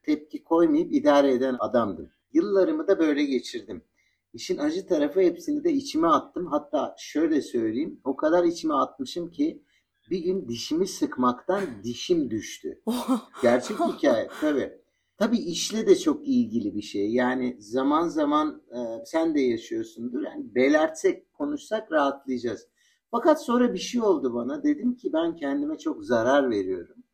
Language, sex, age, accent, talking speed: Turkish, male, 60-79, native, 140 wpm